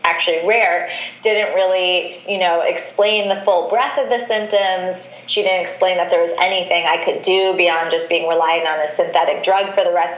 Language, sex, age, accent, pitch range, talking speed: English, female, 20-39, American, 175-205 Hz, 200 wpm